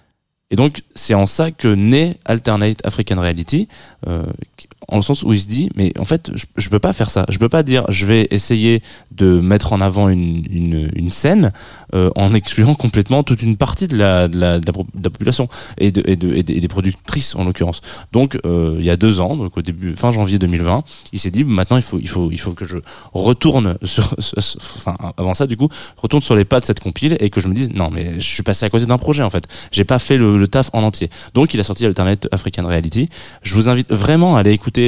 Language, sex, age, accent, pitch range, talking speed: French, male, 20-39, French, 90-120 Hz, 255 wpm